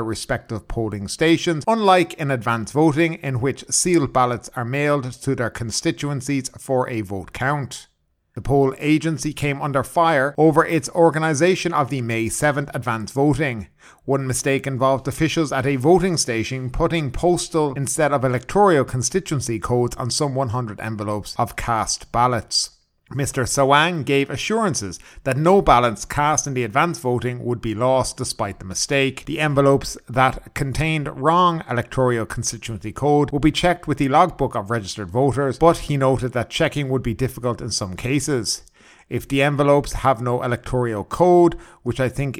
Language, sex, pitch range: English, male, 120-150 Hz